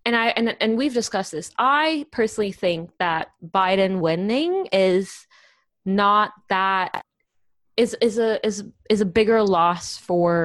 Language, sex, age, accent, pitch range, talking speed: English, female, 20-39, American, 165-205 Hz, 145 wpm